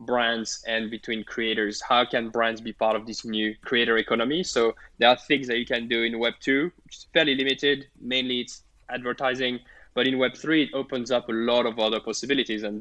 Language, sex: English, male